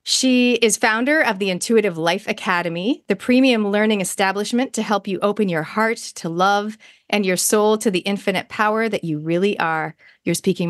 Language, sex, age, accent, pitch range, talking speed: English, female, 30-49, American, 185-225 Hz, 185 wpm